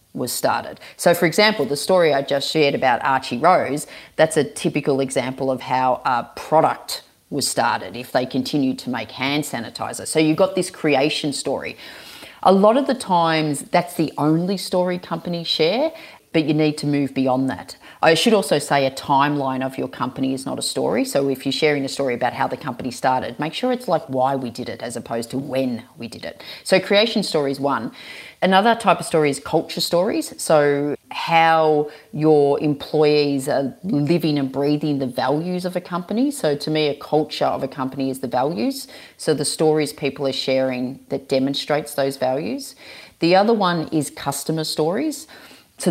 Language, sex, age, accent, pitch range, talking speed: English, female, 30-49, Australian, 135-170 Hz, 190 wpm